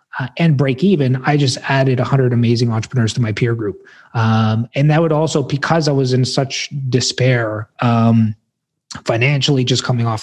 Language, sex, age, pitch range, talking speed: English, male, 20-39, 115-140 Hz, 180 wpm